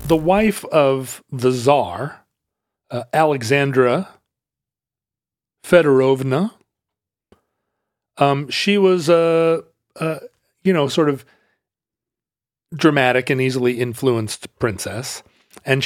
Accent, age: American, 40-59